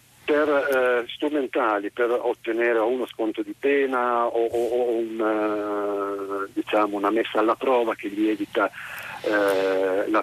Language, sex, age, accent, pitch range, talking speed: Italian, male, 50-69, native, 115-140 Hz, 125 wpm